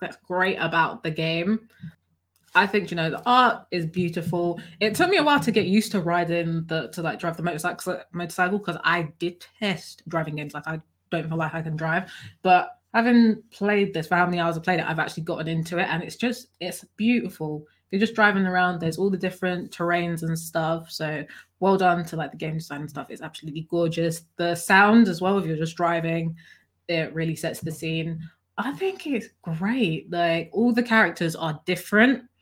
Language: English